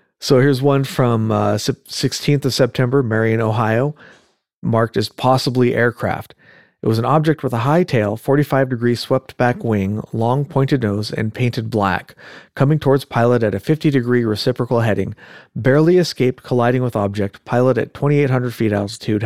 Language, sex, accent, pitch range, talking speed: English, male, American, 110-145 Hz, 155 wpm